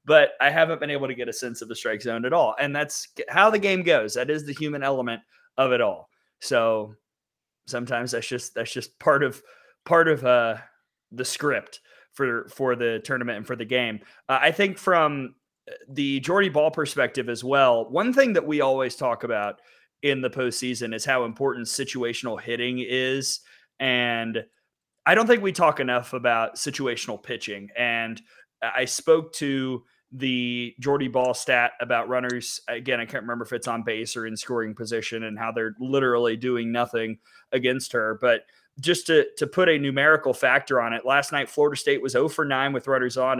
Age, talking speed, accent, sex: 30-49, 190 wpm, American, male